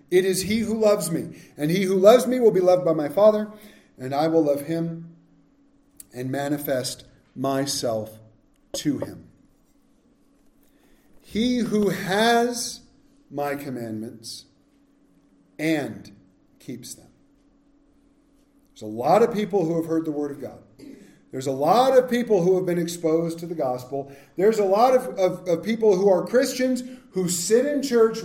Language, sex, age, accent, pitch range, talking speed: English, male, 40-59, American, 155-250 Hz, 155 wpm